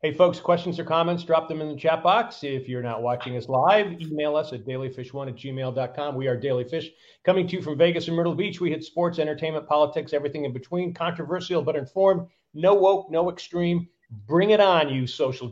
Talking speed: 215 wpm